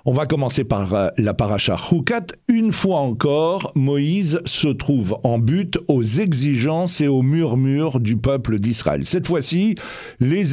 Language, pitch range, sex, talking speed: French, 125-170 Hz, male, 150 wpm